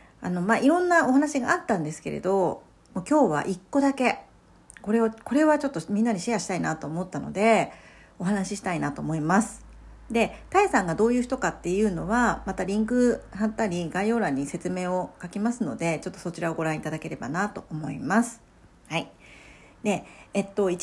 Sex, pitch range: female, 175-245 Hz